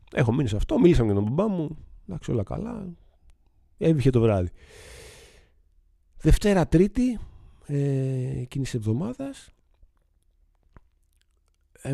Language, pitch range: Greek, 90-145 Hz